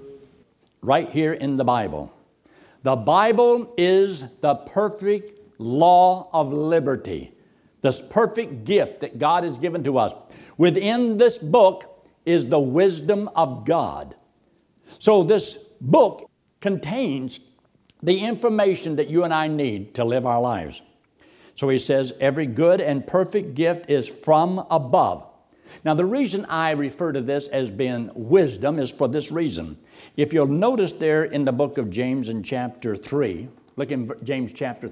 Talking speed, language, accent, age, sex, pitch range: 150 wpm, English, American, 60-79, male, 140-195 Hz